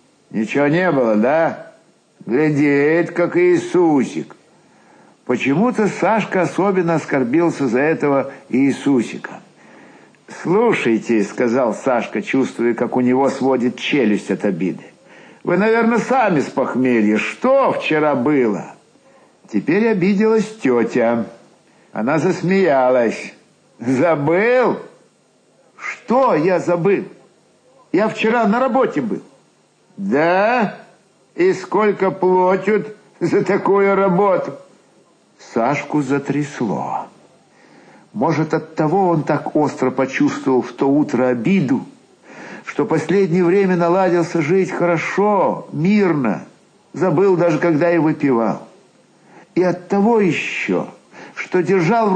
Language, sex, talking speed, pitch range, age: Russian, male, 100 wpm, 145-200 Hz, 60-79